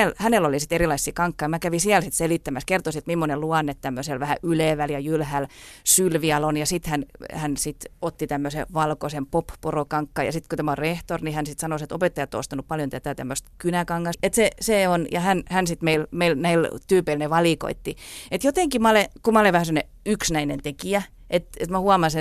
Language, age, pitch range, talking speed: Finnish, 30-49, 150-185 Hz, 195 wpm